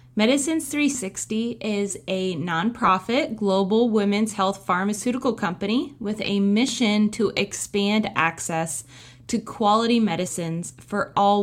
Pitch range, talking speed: 175-215 Hz, 110 wpm